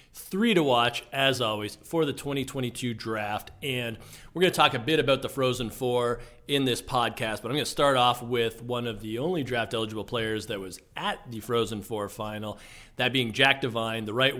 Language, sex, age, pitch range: English, male, 40-59, 115-145 Hz